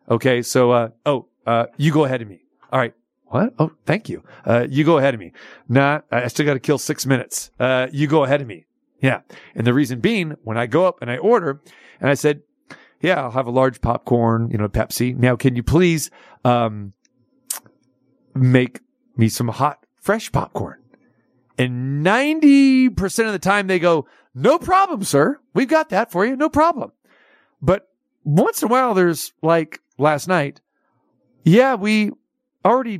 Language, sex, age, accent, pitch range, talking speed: English, male, 40-59, American, 130-190 Hz, 180 wpm